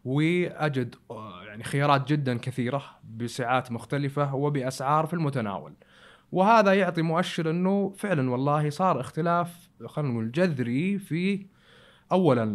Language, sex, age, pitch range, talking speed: Arabic, male, 20-39, 115-155 Hz, 105 wpm